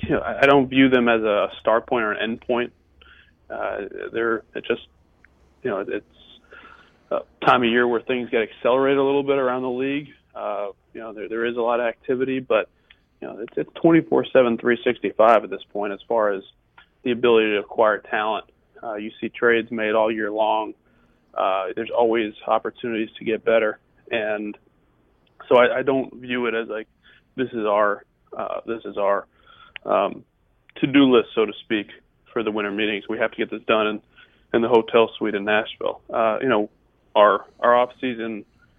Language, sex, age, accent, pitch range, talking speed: English, male, 30-49, American, 105-125 Hz, 190 wpm